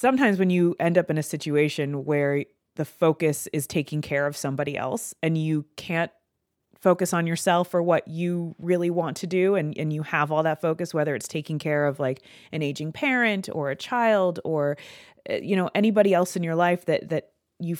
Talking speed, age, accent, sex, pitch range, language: 200 wpm, 30-49, American, female, 150-180 Hz, English